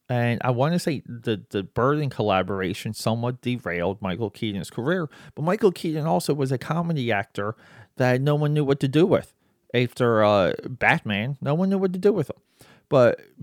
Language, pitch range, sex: English, 105-135 Hz, male